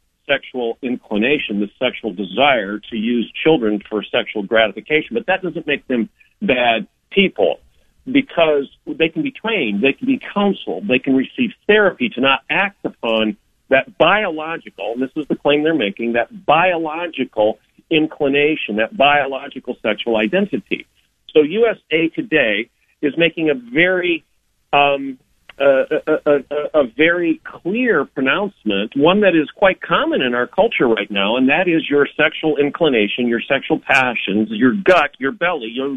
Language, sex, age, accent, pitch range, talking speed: English, male, 50-69, American, 130-185 Hz, 150 wpm